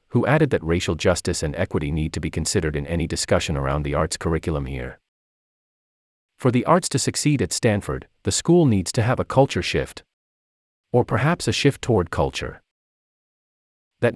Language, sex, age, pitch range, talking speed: English, male, 30-49, 80-125 Hz, 175 wpm